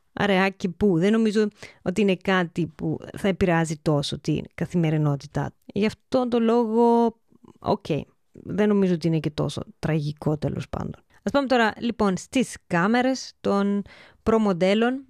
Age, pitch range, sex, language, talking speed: 20-39, 170-215 Hz, female, Greek, 145 wpm